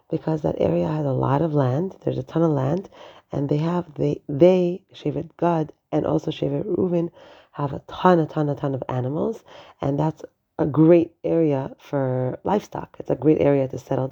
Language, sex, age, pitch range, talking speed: English, female, 30-49, 140-170 Hz, 195 wpm